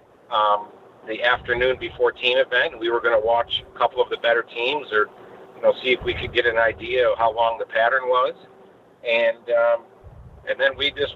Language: English